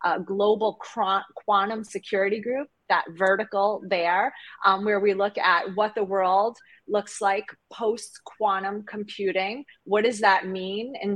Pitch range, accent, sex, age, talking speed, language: 185-215 Hz, American, female, 30-49, 135 wpm, English